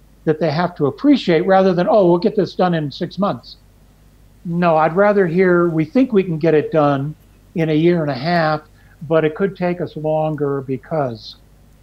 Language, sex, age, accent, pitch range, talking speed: English, male, 60-79, American, 140-180 Hz, 200 wpm